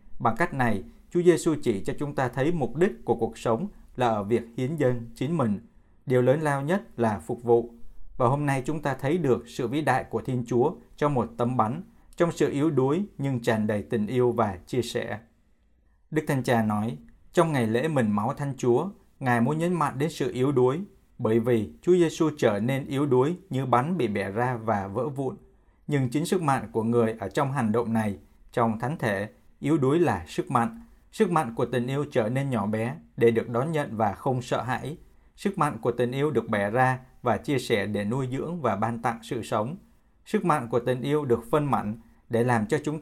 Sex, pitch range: male, 115-145 Hz